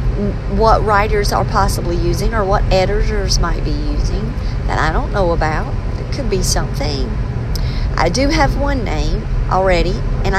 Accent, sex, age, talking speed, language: American, female, 40-59, 155 wpm, English